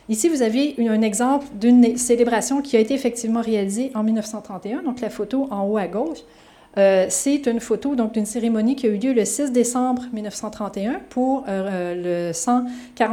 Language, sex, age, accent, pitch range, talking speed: French, female, 30-49, Canadian, 200-240 Hz, 165 wpm